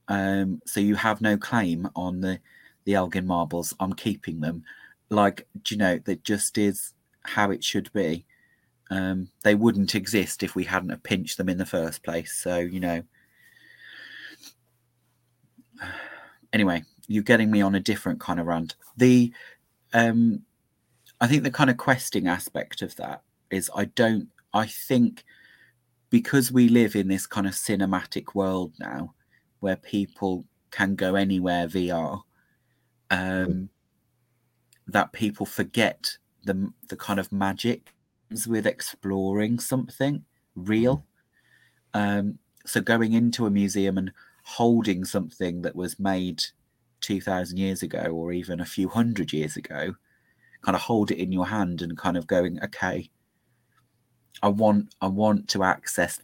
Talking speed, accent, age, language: 145 wpm, British, 30-49, English